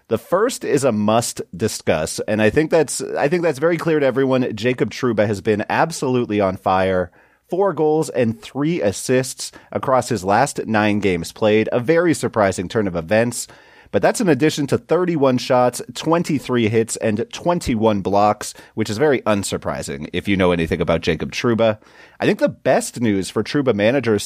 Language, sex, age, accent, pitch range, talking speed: English, male, 30-49, American, 105-140 Hz, 180 wpm